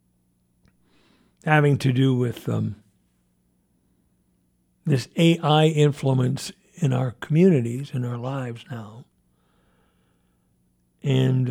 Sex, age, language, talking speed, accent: male, 60-79, English, 85 wpm, American